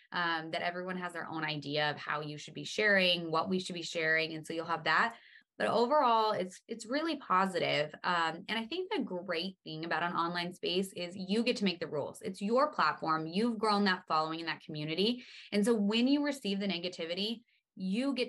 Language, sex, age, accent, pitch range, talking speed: English, female, 20-39, American, 165-200 Hz, 215 wpm